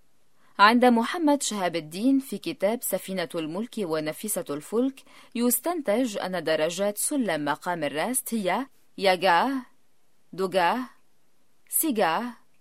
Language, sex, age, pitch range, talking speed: Arabic, female, 30-49, 185-265 Hz, 95 wpm